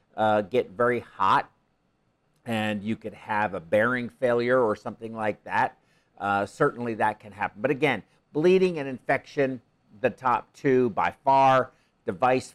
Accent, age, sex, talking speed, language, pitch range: American, 50-69, male, 150 wpm, English, 105-135 Hz